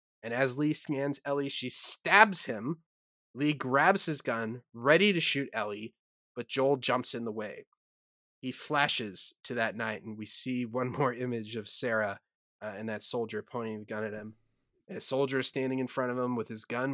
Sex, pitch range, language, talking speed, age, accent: male, 115-145 Hz, English, 195 wpm, 30-49, American